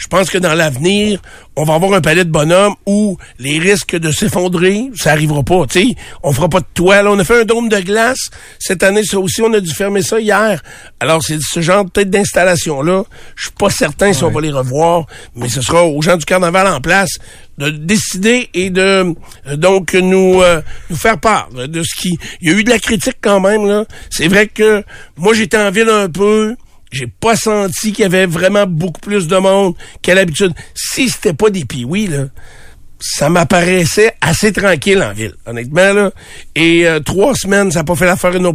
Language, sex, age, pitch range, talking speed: French, male, 60-79, 160-200 Hz, 210 wpm